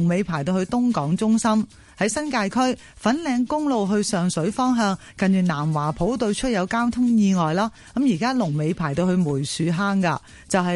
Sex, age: female, 30-49